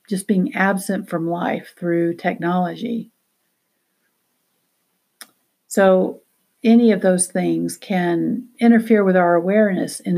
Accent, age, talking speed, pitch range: American, 60-79, 105 wpm, 175-225 Hz